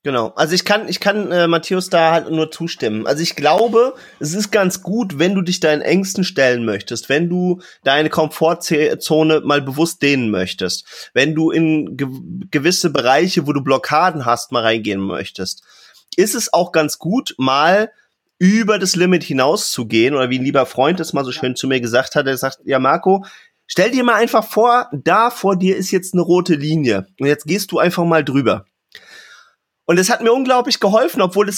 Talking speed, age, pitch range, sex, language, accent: 195 wpm, 30-49, 150-205 Hz, male, German, German